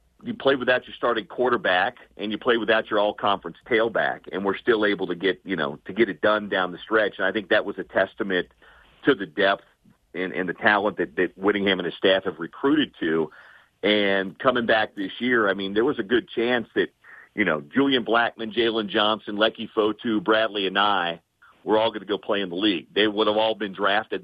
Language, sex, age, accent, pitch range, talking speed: English, male, 50-69, American, 100-120 Hz, 230 wpm